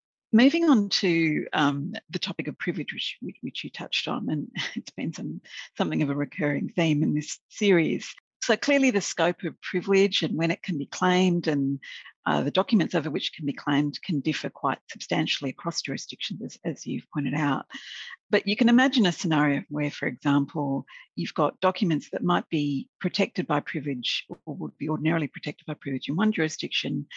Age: 50-69